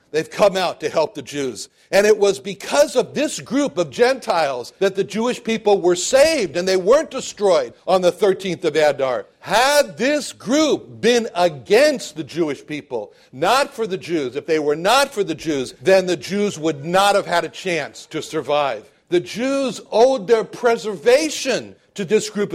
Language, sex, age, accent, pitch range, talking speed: English, male, 60-79, American, 170-230 Hz, 185 wpm